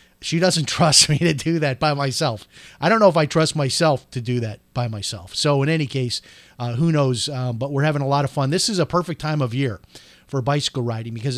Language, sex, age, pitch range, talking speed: English, male, 40-59, 125-160 Hz, 250 wpm